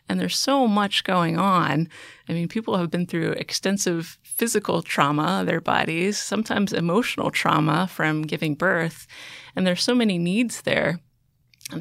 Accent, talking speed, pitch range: American, 150 wpm, 160-195 Hz